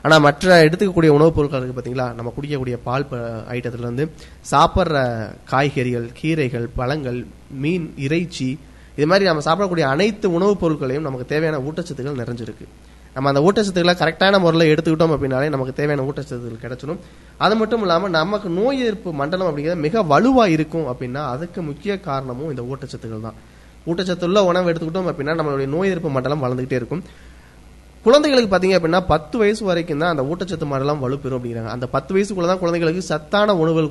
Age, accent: 20-39, native